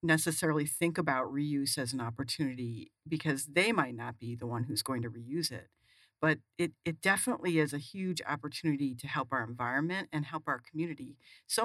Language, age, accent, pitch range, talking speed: English, 60-79, American, 130-160 Hz, 185 wpm